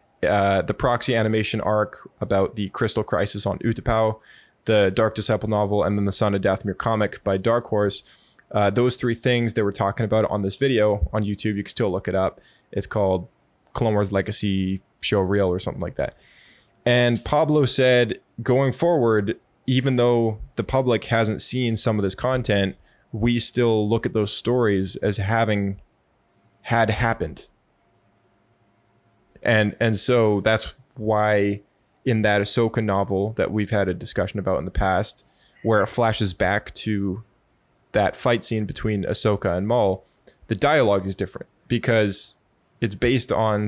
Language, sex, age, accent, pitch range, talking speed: English, male, 20-39, American, 100-115 Hz, 160 wpm